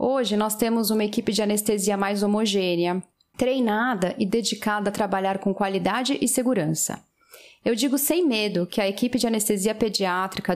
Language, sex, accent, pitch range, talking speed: Portuguese, female, Brazilian, 195-240 Hz, 160 wpm